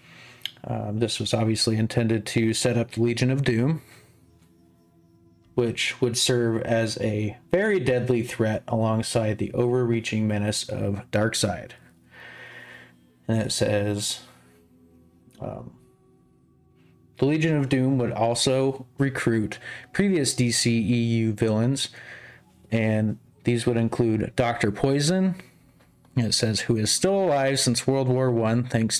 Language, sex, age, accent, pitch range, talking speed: English, male, 30-49, American, 110-125 Hz, 120 wpm